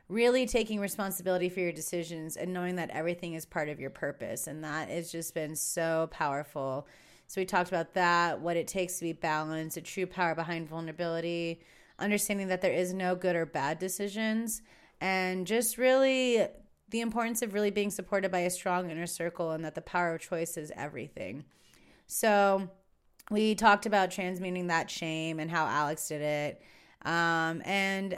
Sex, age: female, 30-49